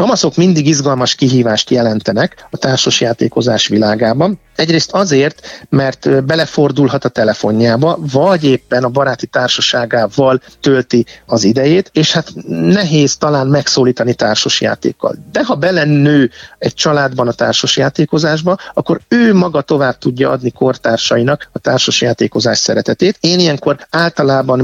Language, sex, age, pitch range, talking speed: Hungarian, male, 50-69, 125-155 Hz, 115 wpm